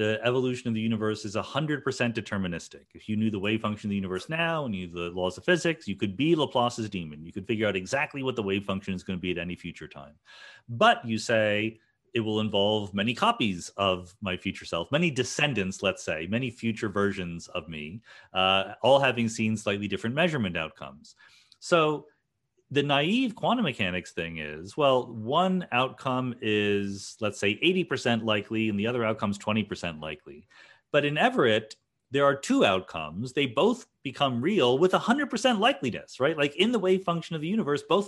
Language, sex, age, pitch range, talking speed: English, male, 40-59, 100-145 Hz, 190 wpm